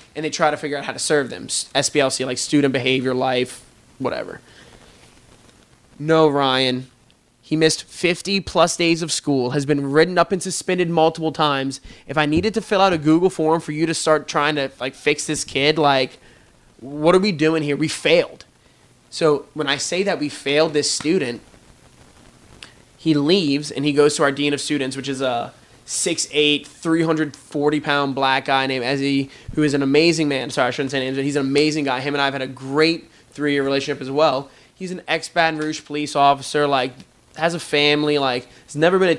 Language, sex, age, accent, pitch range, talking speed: English, male, 20-39, American, 135-160 Hz, 195 wpm